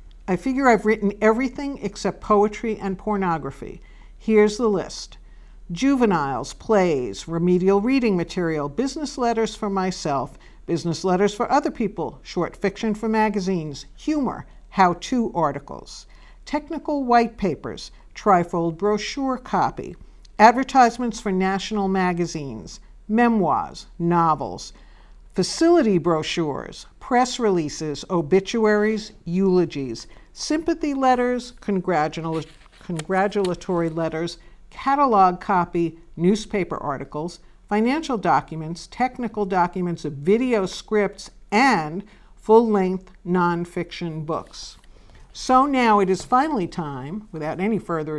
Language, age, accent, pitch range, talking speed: English, 60-79, American, 170-225 Hz, 100 wpm